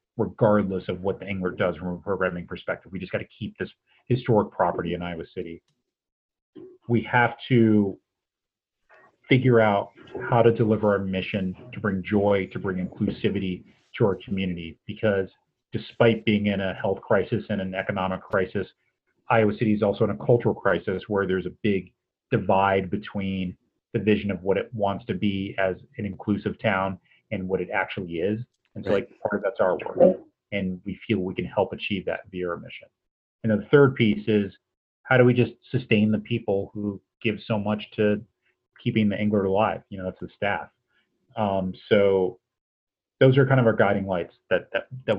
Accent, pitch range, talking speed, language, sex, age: American, 95-110 Hz, 185 wpm, English, male, 40-59